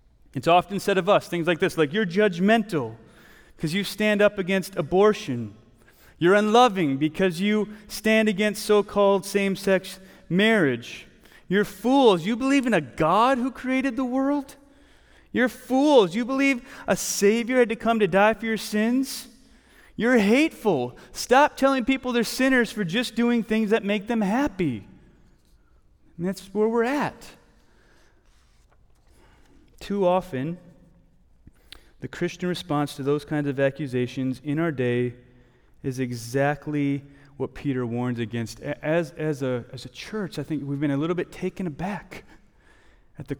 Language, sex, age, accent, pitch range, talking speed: English, male, 30-49, American, 150-225 Hz, 150 wpm